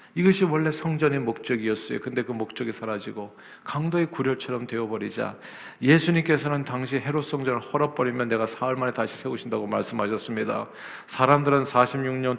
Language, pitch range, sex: Korean, 125-160 Hz, male